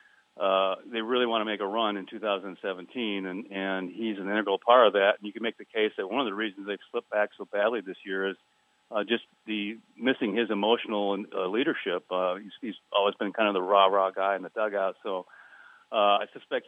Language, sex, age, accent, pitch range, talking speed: English, male, 40-59, American, 100-110 Hz, 225 wpm